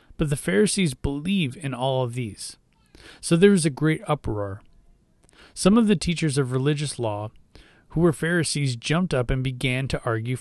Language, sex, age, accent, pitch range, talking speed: English, male, 30-49, American, 120-155 Hz, 175 wpm